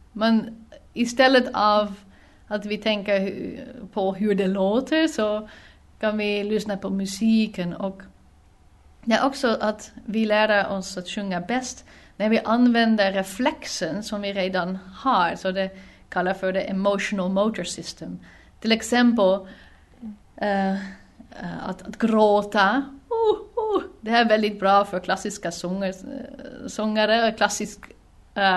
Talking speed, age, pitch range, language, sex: 120 wpm, 30-49, 190-225 Hz, Swedish, female